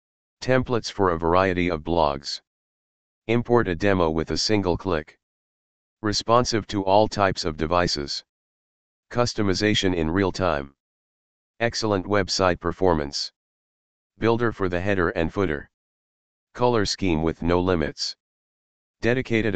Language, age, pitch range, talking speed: English, 40-59, 85-105 Hz, 115 wpm